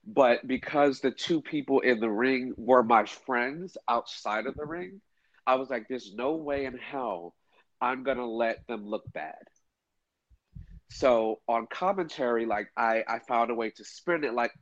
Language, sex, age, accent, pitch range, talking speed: English, male, 40-59, American, 115-145 Hz, 175 wpm